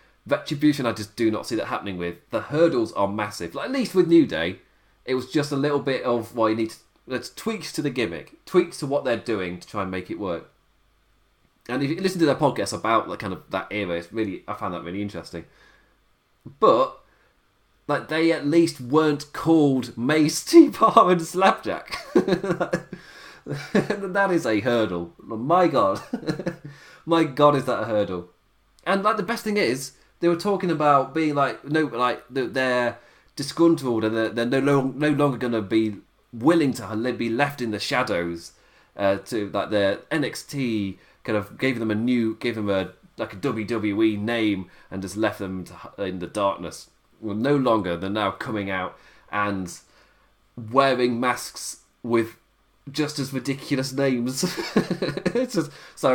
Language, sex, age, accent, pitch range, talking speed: English, male, 30-49, British, 105-155 Hz, 180 wpm